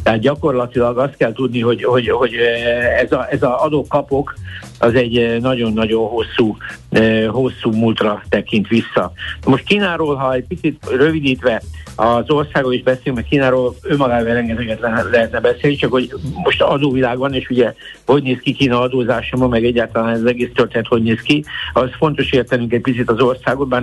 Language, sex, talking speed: Hungarian, male, 165 wpm